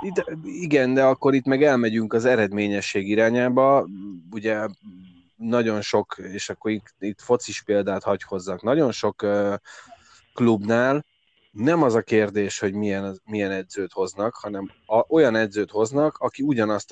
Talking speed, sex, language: 145 wpm, male, Hungarian